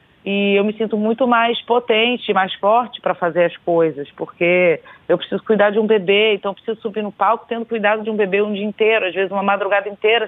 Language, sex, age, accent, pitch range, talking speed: Portuguese, female, 40-59, Brazilian, 195-225 Hz, 230 wpm